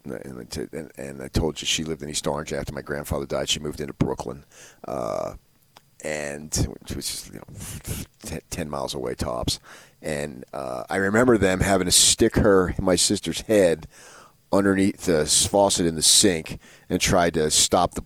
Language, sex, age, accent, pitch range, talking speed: English, male, 30-49, American, 70-95 Hz, 185 wpm